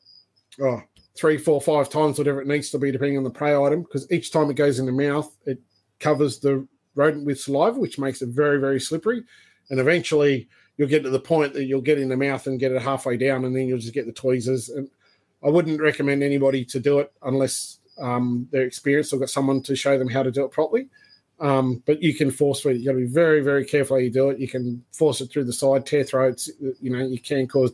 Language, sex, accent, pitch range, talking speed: English, male, Australian, 130-150 Hz, 250 wpm